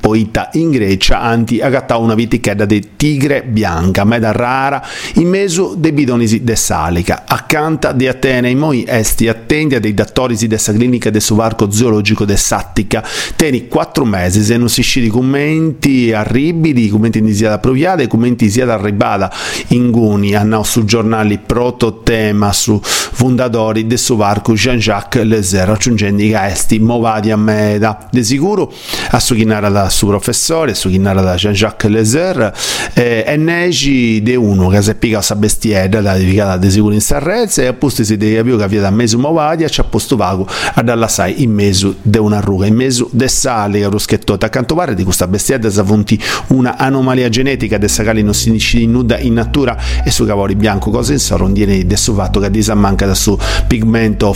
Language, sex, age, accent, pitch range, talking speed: Italian, male, 40-59, native, 105-125 Hz, 180 wpm